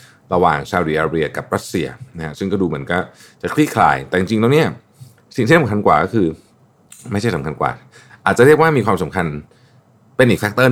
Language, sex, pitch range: Thai, male, 95-130 Hz